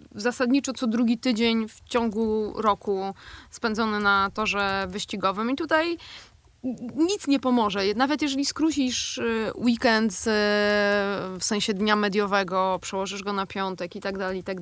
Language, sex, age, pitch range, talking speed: Polish, female, 20-39, 205-265 Hz, 140 wpm